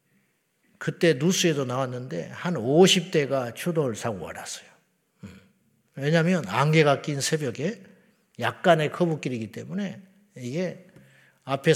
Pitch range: 135-180 Hz